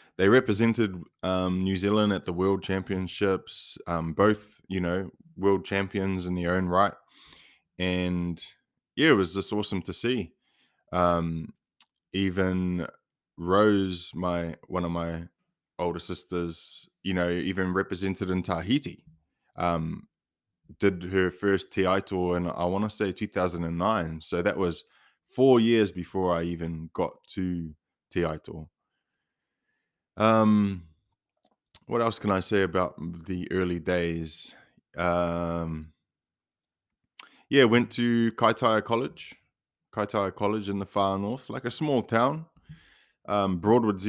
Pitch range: 85-105 Hz